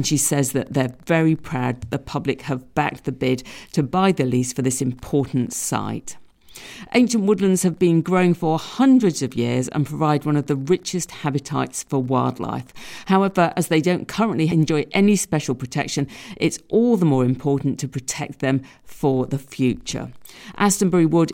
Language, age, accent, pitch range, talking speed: English, 50-69, British, 130-170 Hz, 170 wpm